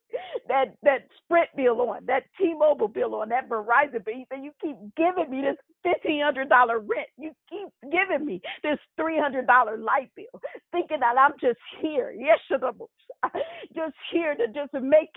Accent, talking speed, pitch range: American, 160 wpm, 260-345 Hz